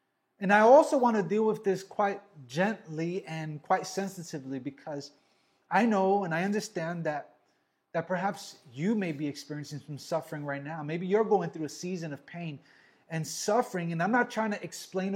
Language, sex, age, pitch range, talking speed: English, male, 20-39, 155-200 Hz, 180 wpm